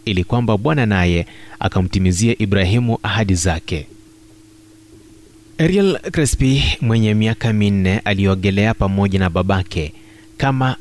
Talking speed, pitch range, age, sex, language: 100 wpm, 100-115 Hz, 30-49, male, Swahili